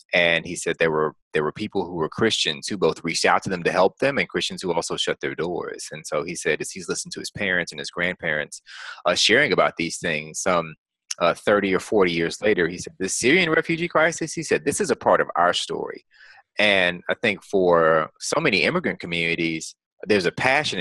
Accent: American